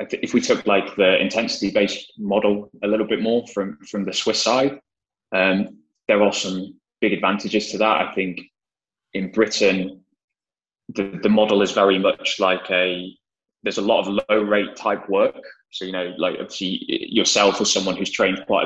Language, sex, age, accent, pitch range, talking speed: French, male, 20-39, British, 90-100 Hz, 180 wpm